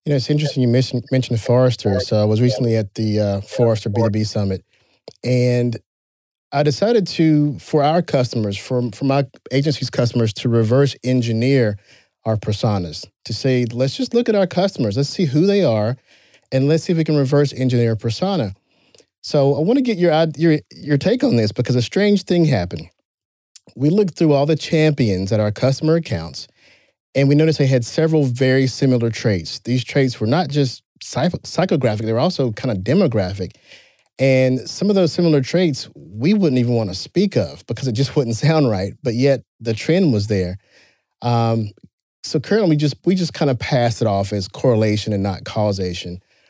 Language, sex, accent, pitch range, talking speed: English, male, American, 115-155 Hz, 190 wpm